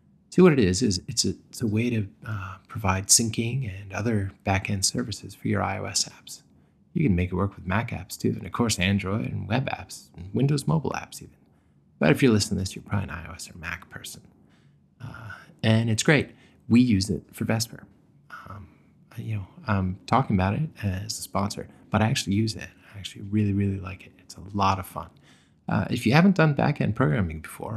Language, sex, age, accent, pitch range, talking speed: English, male, 20-39, American, 95-115 Hz, 215 wpm